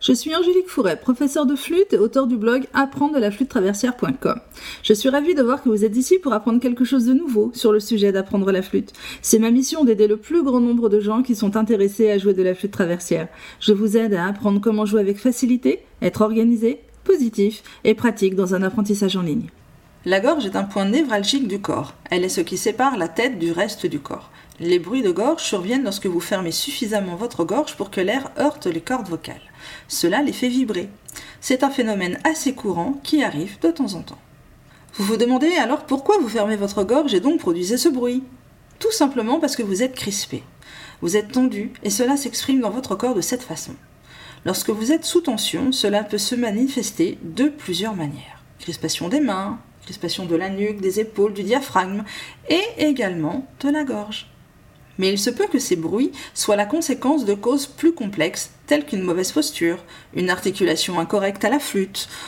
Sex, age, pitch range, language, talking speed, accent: female, 40-59, 200-275 Hz, French, 200 wpm, French